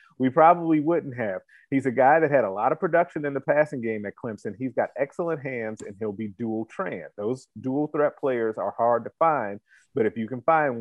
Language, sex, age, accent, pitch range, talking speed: English, male, 30-49, American, 125-165 Hz, 230 wpm